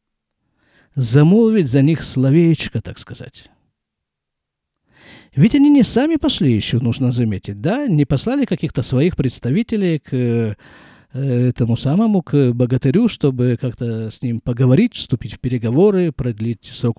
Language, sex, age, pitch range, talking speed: Russian, male, 50-69, 125-180 Hz, 125 wpm